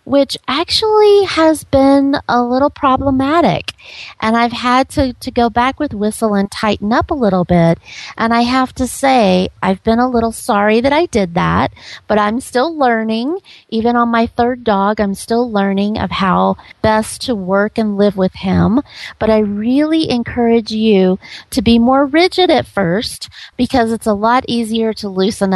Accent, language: American, English